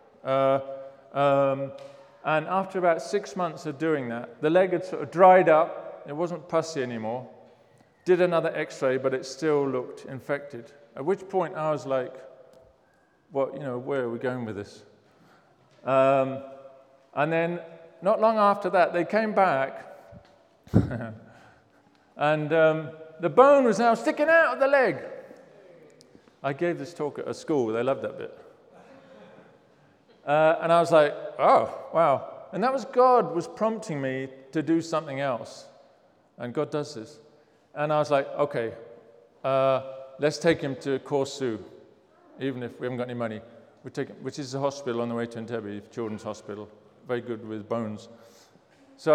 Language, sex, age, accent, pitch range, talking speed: English, male, 40-59, British, 130-175 Hz, 165 wpm